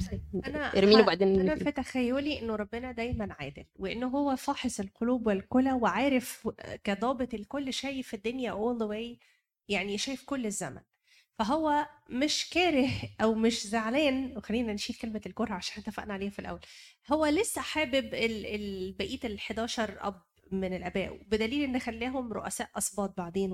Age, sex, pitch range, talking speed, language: 20-39, female, 210-265 Hz, 135 wpm, Arabic